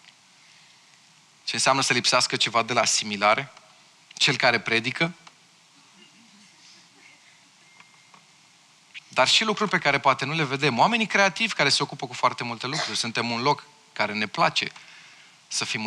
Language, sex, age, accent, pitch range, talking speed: Romanian, male, 30-49, native, 125-165 Hz, 140 wpm